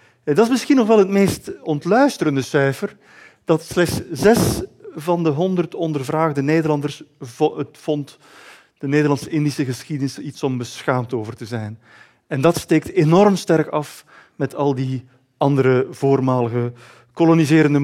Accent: Dutch